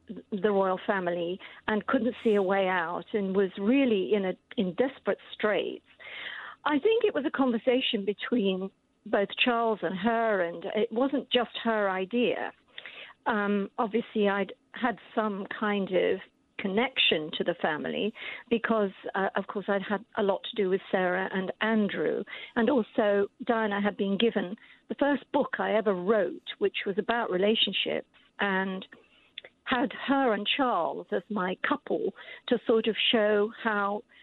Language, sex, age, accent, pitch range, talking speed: English, female, 50-69, British, 195-240 Hz, 155 wpm